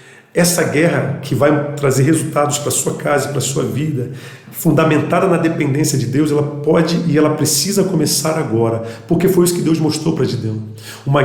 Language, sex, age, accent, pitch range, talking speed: Portuguese, male, 40-59, Brazilian, 130-160 Hz, 190 wpm